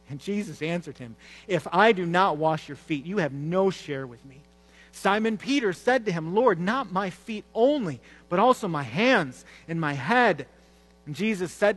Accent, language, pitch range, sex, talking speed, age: American, English, 140-195 Hz, male, 190 wpm, 40-59